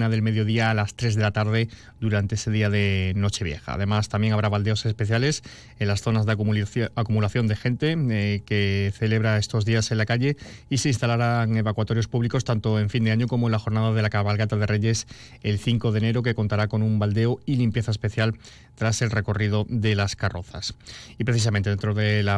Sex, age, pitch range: male, 30-49, 105-115 Hz